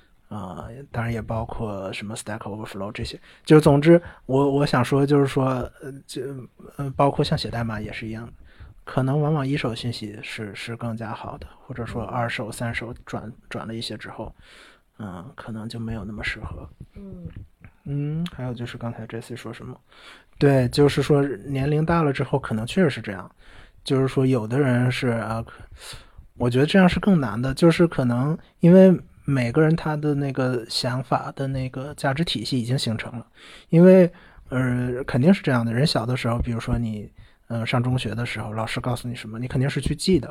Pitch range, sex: 115-140 Hz, male